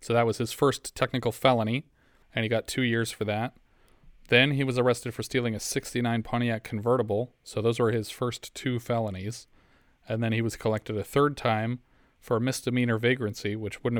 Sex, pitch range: male, 105-120 Hz